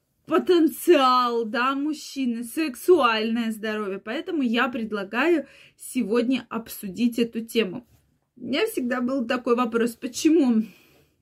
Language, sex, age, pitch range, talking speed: Russian, female, 20-39, 230-280 Hz, 100 wpm